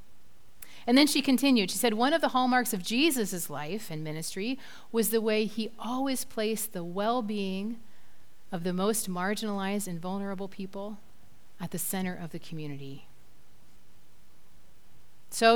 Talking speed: 145 wpm